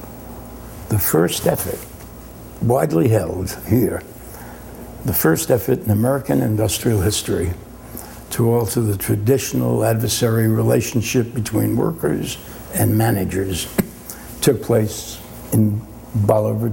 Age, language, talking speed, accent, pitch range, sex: 60-79, English, 95 wpm, American, 105-120 Hz, male